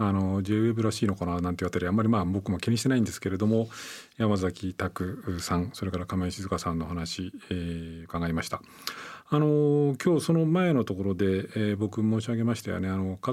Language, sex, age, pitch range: Japanese, male, 40-59, 95-120 Hz